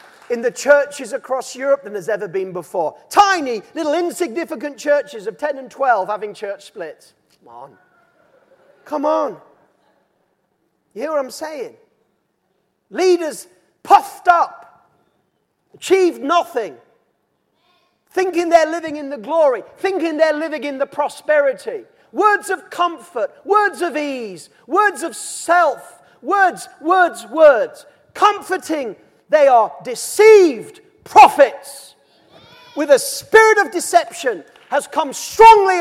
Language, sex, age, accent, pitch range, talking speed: English, male, 40-59, British, 270-355 Hz, 120 wpm